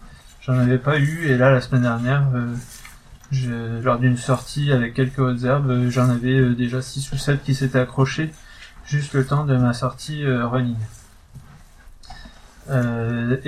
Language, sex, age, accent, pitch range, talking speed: French, male, 30-49, French, 120-135 Hz, 165 wpm